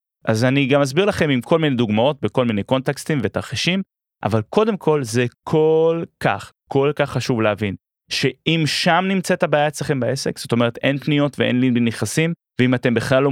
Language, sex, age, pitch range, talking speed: Hebrew, male, 30-49, 115-165 Hz, 180 wpm